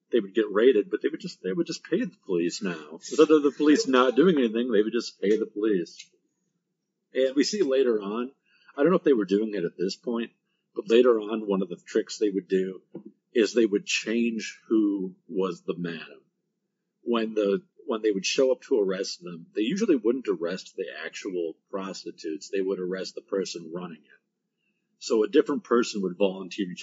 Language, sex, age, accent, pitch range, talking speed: English, male, 50-69, American, 100-155 Hz, 210 wpm